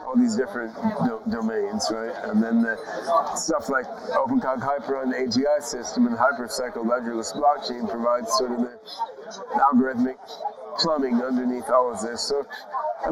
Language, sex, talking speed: English, male, 145 wpm